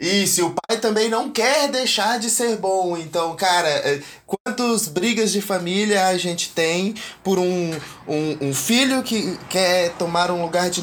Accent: Brazilian